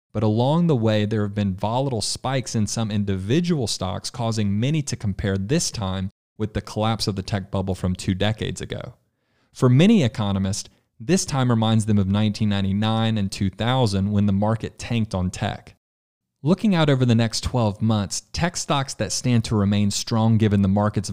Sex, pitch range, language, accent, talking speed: male, 100-120 Hz, English, American, 180 wpm